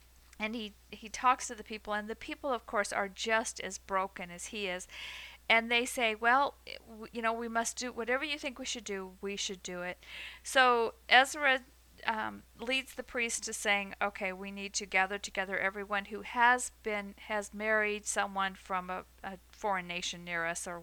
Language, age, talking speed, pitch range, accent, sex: English, 50-69, 195 wpm, 195-240 Hz, American, female